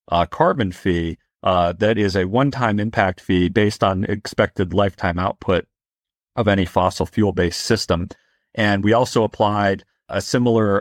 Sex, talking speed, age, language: male, 150 wpm, 40-59, English